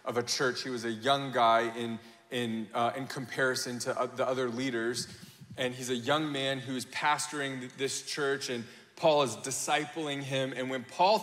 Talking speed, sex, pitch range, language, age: 185 wpm, male, 130-175 Hz, English, 20-39